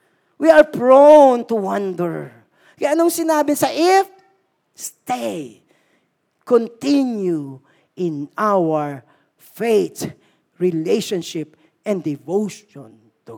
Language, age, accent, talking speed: Filipino, 40-59, native, 85 wpm